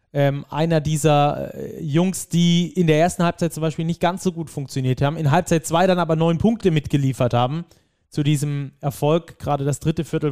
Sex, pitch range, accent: male, 140-170 Hz, German